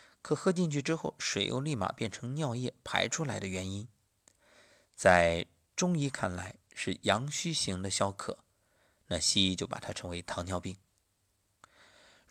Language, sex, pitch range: Chinese, male, 95-115 Hz